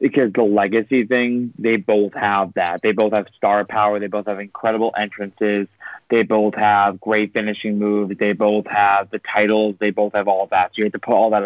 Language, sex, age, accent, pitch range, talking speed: English, male, 20-39, American, 105-120 Hz, 220 wpm